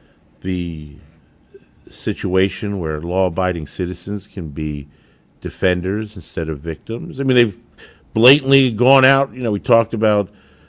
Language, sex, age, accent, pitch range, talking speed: English, male, 50-69, American, 100-140 Hz, 125 wpm